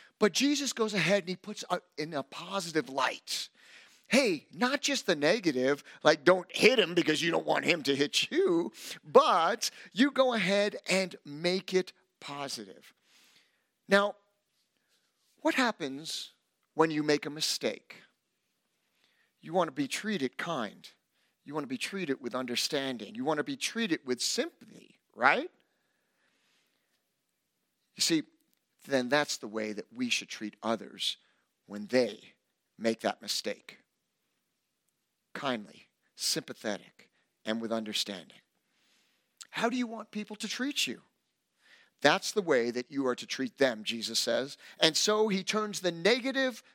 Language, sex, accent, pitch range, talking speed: English, male, American, 140-225 Hz, 140 wpm